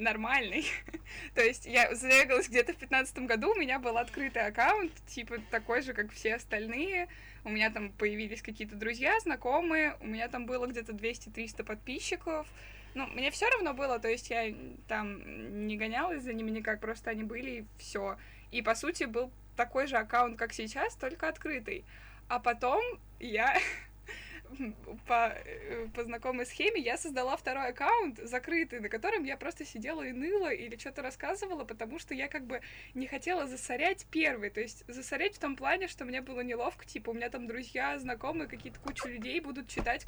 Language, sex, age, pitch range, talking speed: Russian, female, 20-39, 230-295 Hz, 175 wpm